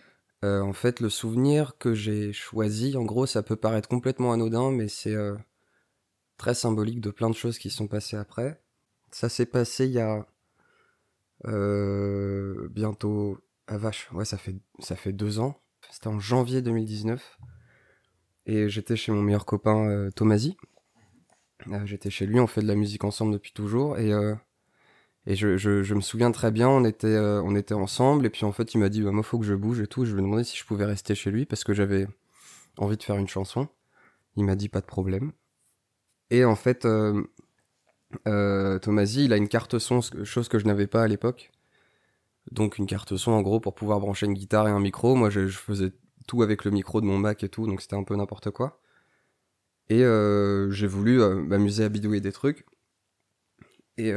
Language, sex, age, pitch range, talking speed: French, male, 20-39, 100-115 Hz, 205 wpm